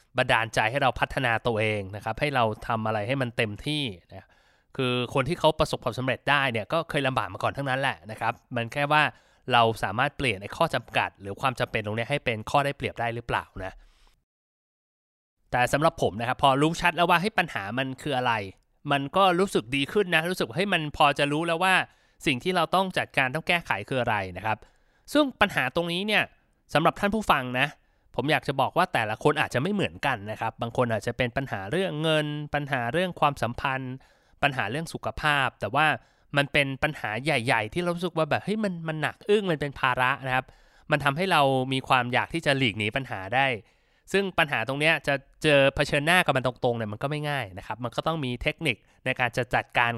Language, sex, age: Thai, male, 20-39